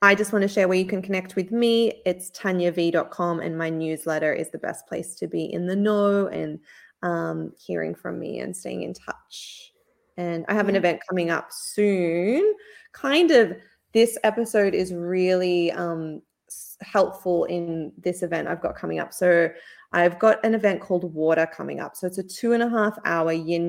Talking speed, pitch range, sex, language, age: 190 wpm, 165-200 Hz, female, English, 20-39